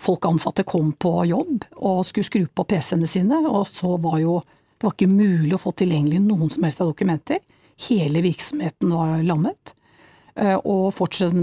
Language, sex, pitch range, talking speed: English, female, 175-225 Hz, 175 wpm